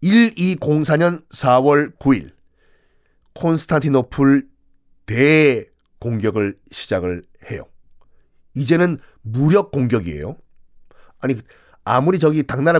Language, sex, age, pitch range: Korean, male, 40-59, 110-165 Hz